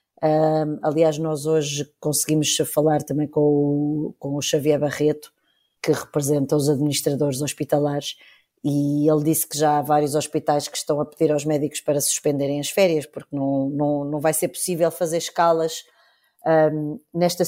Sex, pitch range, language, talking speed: female, 150-200 Hz, Portuguese, 150 wpm